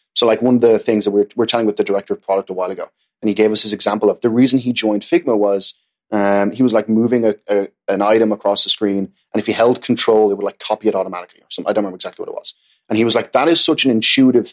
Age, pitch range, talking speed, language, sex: 20-39, 105-125 Hz, 305 wpm, English, male